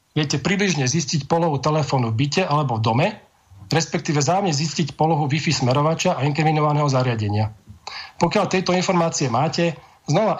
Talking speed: 140 wpm